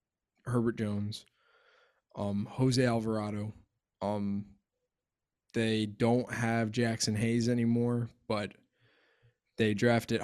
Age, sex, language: 20-39, male, English